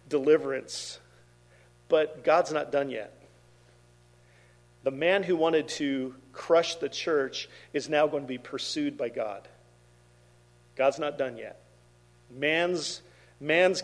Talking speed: 120 wpm